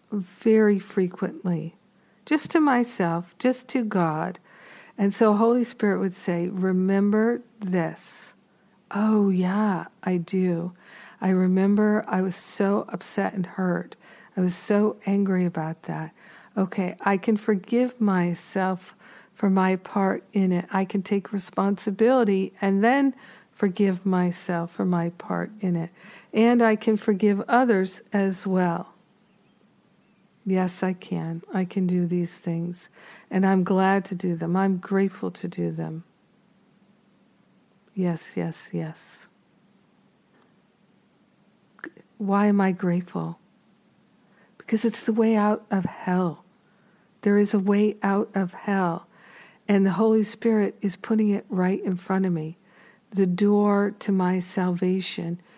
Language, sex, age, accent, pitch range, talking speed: English, female, 50-69, American, 185-210 Hz, 130 wpm